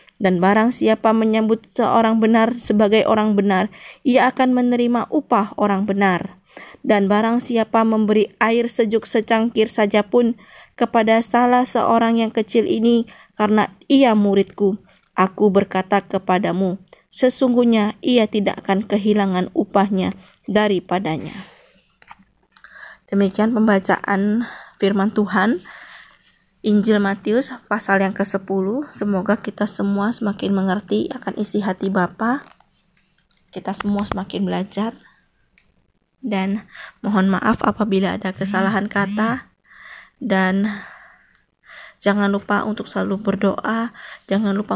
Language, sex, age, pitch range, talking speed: Indonesian, female, 20-39, 195-225 Hz, 105 wpm